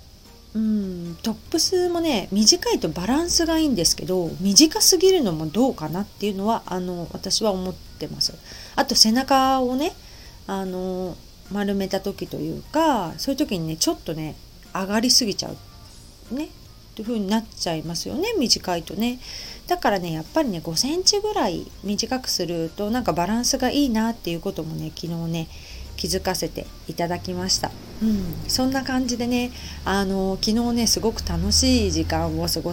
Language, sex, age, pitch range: Japanese, female, 40-59, 170-245 Hz